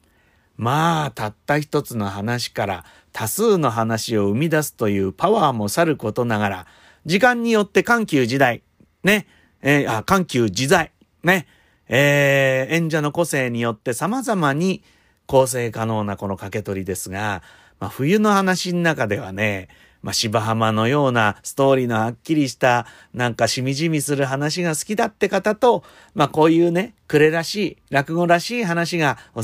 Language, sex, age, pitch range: Japanese, male, 40-59, 110-170 Hz